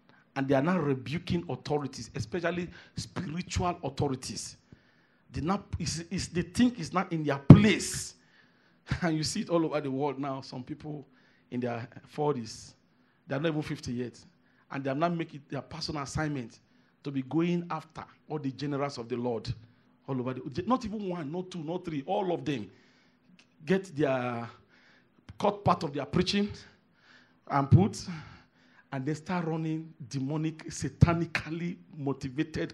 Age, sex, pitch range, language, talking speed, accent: 40-59, male, 135-180 Hz, English, 165 wpm, Nigerian